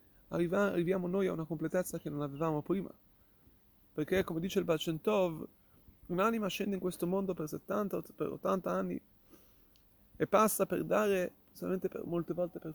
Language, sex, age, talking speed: Italian, male, 30-49, 155 wpm